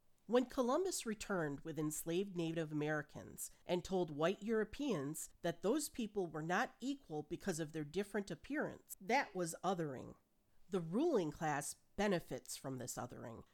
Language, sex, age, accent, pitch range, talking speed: English, female, 40-59, American, 150-205 Hz, 140 wpm